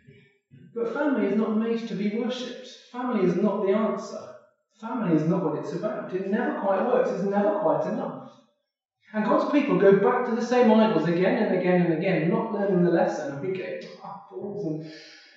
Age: 30-49